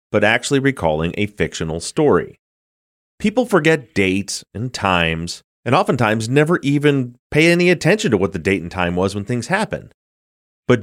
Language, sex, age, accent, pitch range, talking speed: English, male, 30-49, American, 90-130 Hz, 160 wpm